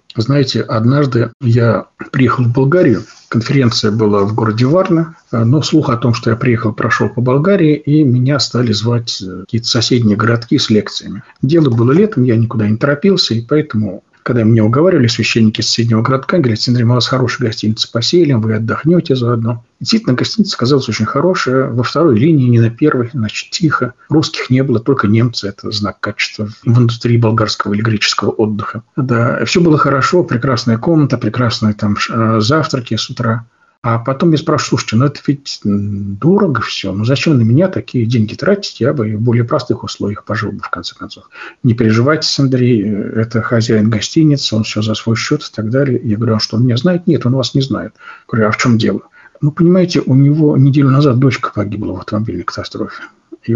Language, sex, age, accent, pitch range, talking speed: Russian, male, 50-69, native, 110-145 Hz, 185 wpm